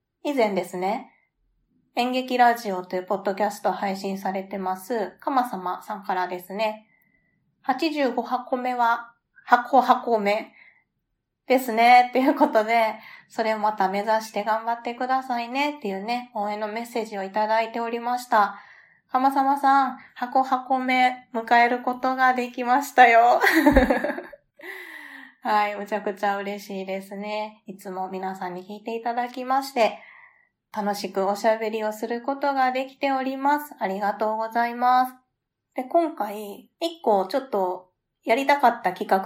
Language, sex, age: Japanese, female, 20-39